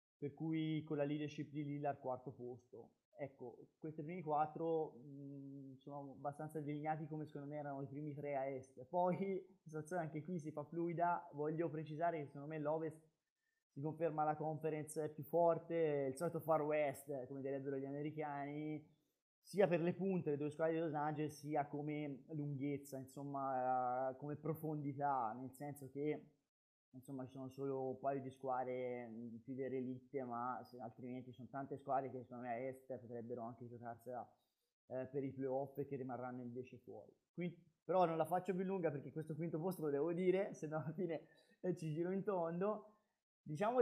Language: Italian